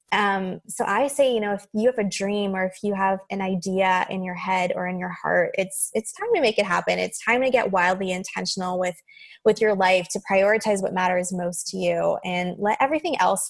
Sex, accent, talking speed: female, American, 230 wpm